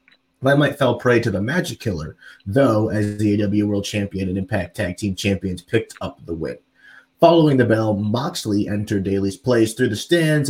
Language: English